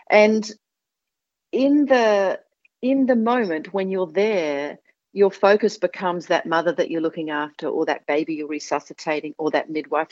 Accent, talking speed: Australian, 155 wpm